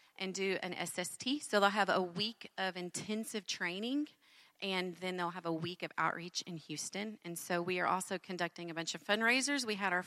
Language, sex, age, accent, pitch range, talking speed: English, female, 30-49, American, 175-215 Hz, 210 wpm